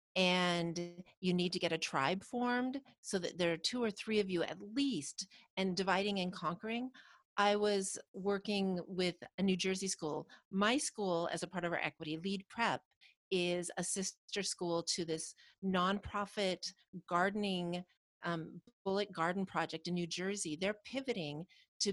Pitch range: 175-220 Hz